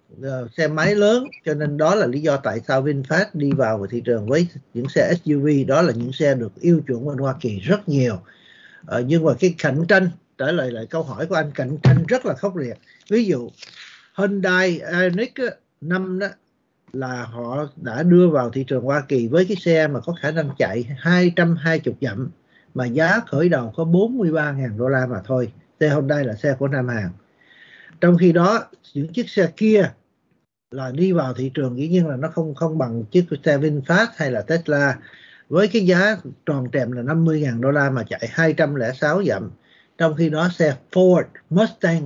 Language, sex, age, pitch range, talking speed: Vietnamese, male, 60-79, 130-175 Hz, 195 wpm